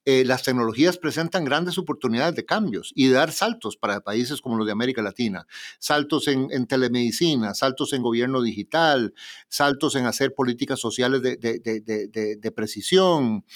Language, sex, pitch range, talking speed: Spanish, male, 115-155 Hz, 170 wpm